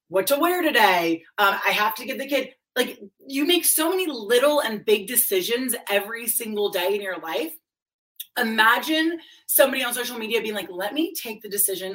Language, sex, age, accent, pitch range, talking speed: English, female, 20-39, American, 205-295 Hz, 190 wpm